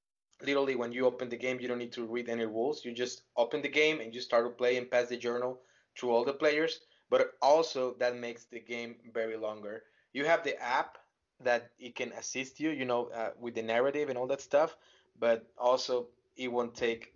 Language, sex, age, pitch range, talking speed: English, male, 20-39, 115-125 Hz, 220 wpm